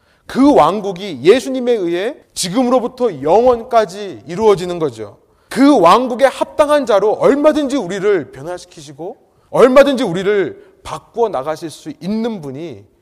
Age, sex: 30-49, male